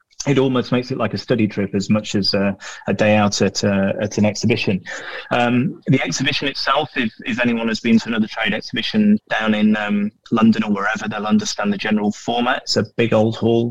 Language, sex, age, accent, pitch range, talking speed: English, male, 30-49, British, 100-110 Hz, 215 wpm